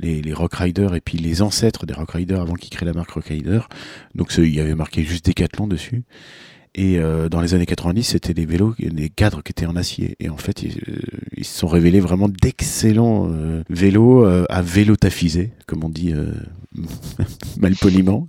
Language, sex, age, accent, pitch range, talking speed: French, male, 40-59, French, 80-105 Hz, 195 wpm